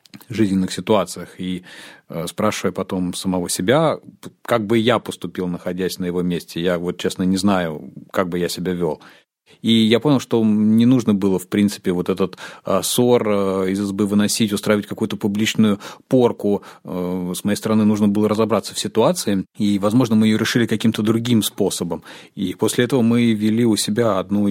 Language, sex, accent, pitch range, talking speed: Russian, male, native, 95-110 Hz, 165 wpm